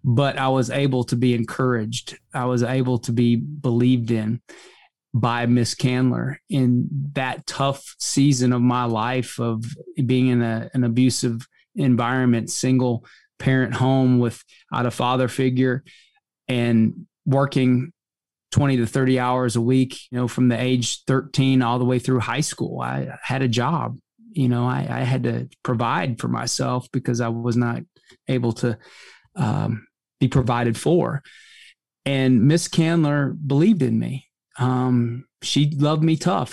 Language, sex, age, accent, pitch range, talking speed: English, male, 20-39, American, 120-140 Hz, 150 wpm